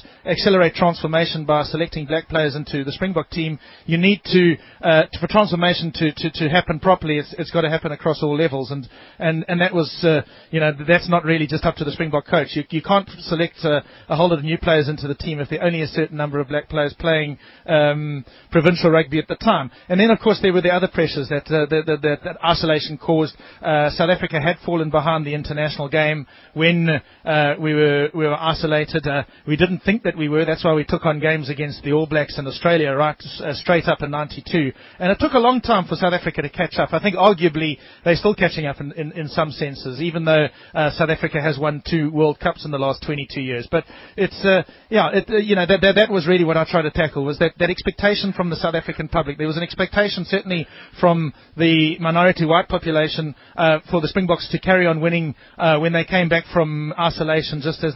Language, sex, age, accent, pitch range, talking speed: English, male, 30-49, Australian, 150-175 Hz, 235 wpm